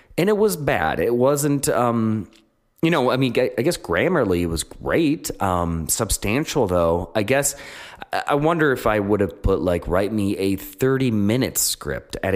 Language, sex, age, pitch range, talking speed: English, male, 30-49, 85-115 Hz, 175 wpm